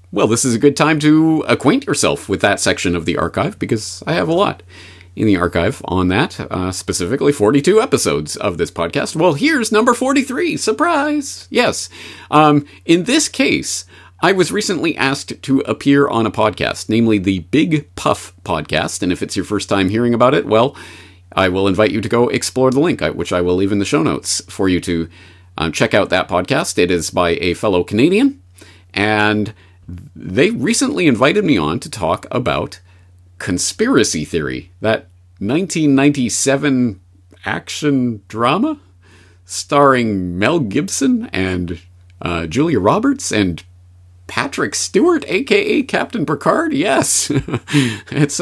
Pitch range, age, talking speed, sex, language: 90-145 Hz, 40-59, 155 wpm, male, English